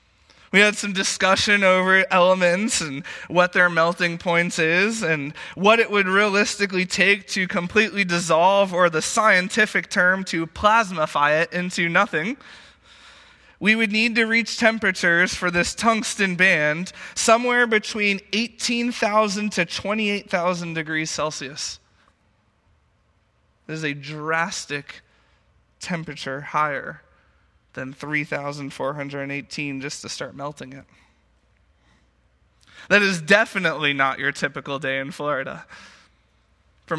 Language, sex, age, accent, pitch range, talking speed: English, male, 20-39, American, 140-195 Hz, 115 wpm